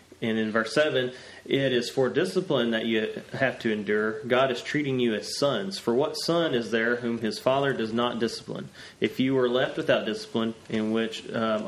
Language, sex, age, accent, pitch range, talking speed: English, male, 30-49, American, 115-135 Hz, 200 wpm